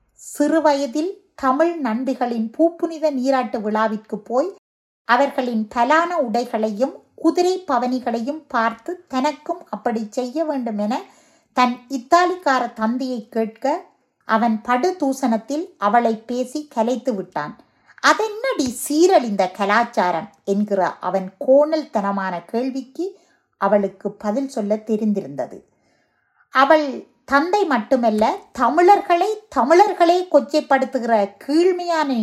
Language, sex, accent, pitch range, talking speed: Tamil, female, native, 225-320 Hz, 90 wpm